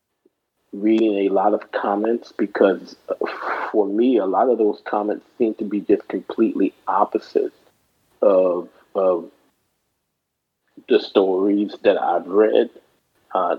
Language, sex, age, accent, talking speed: English, male, 40-59, American, 120 wpm